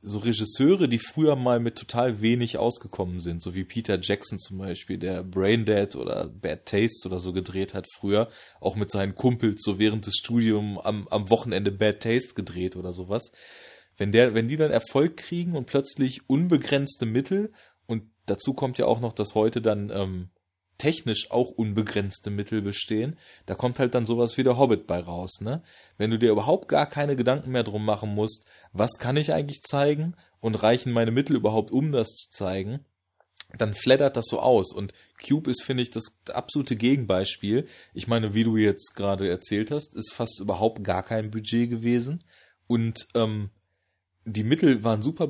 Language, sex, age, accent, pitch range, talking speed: German, male, 20-39, German, 100-125 Hz, 180 wpm